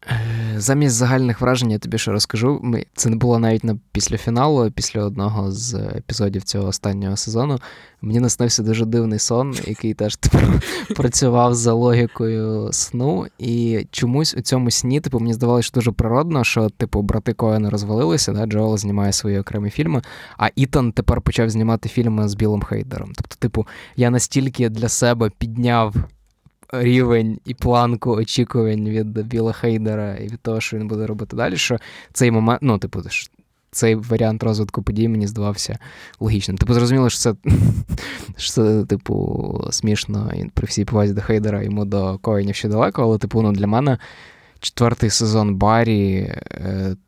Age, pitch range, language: 20-39, 105-120 Hz, Ukrainian